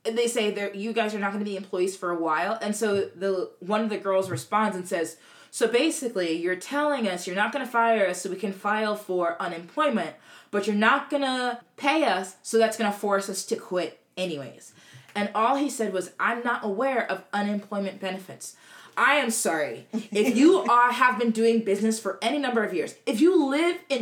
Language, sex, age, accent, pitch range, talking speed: English, female, 20-39, American, 185-240 Hz, 215 wpm